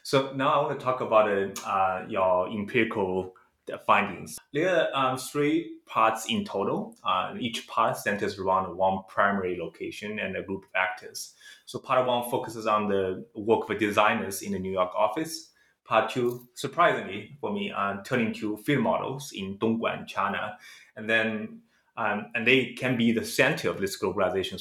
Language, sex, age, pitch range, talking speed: English, male, 20-39, 100-130 Hz, 175 wpm